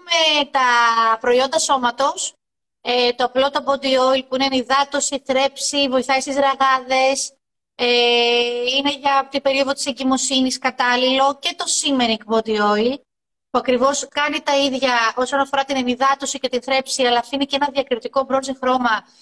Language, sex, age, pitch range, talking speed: Greek, female, 30-49, 235-285 Hz, 150 wpm